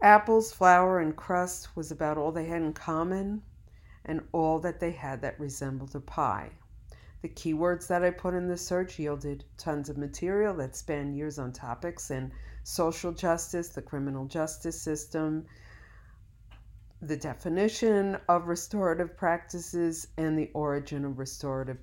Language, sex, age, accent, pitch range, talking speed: English, female, 50-69, American, 135-170 Hz, 150 wpm